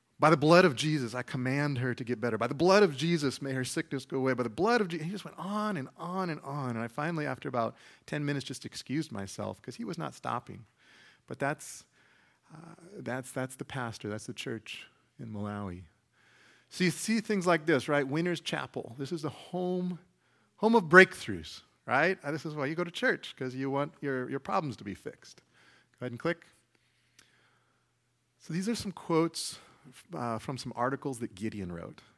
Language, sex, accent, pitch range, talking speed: English, male, American, 110-155 Hz, 205 wpm